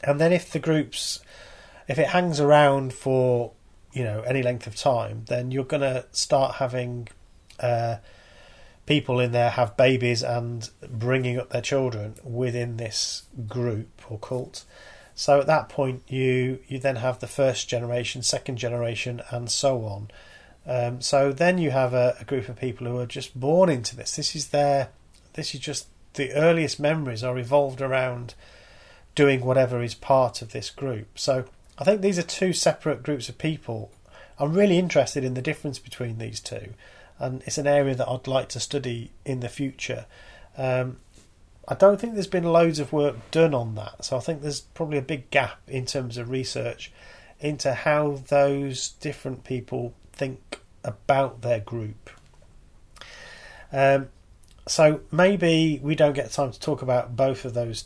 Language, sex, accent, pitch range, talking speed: English, male, British, 120-145 Hz, 170 wpm